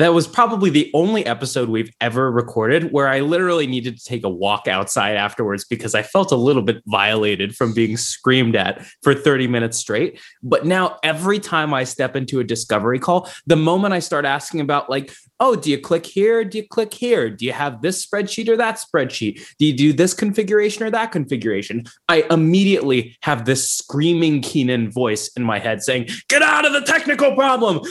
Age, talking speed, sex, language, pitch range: 20-39, 200 wpm, male, English, 125-170 Hz